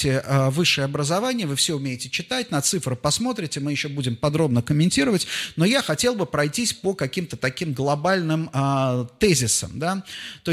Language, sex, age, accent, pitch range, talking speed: Russian, male, 30-49, native, 130-180 Hz, 150 wpm